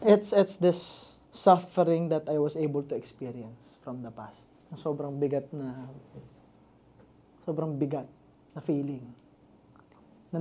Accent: native